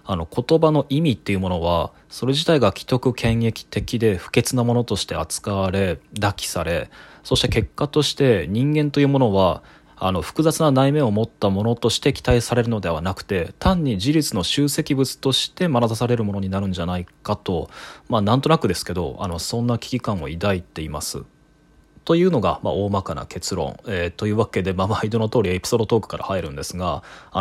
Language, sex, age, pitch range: Japanese, male, 20-39, 95-125 Hz